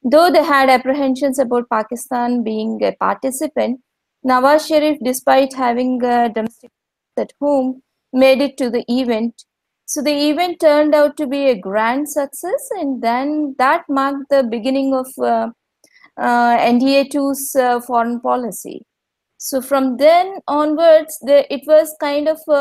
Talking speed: 145 wpm